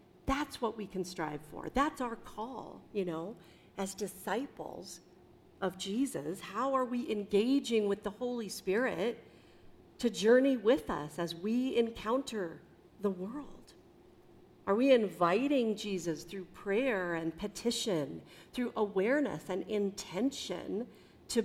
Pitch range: 180-240 Hz